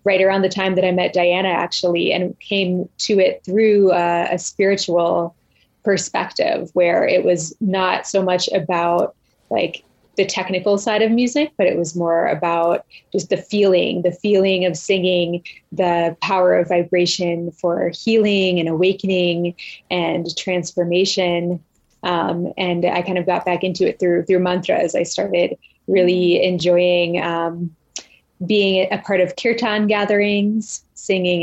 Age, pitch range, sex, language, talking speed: 20-39, 175-195 Hz, female, English, 145 wpm